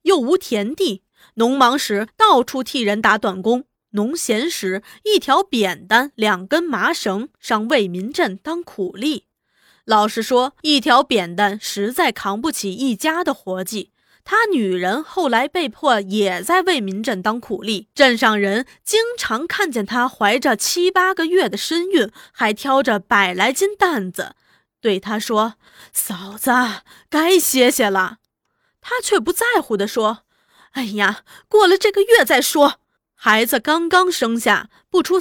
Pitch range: 210-335 Hz